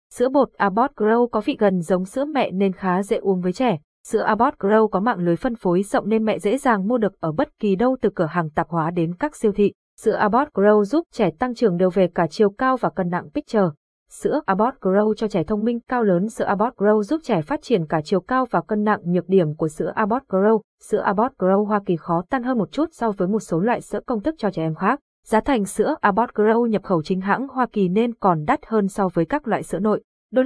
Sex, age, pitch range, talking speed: female, 20-39, 190-230 Hz, 260 wpm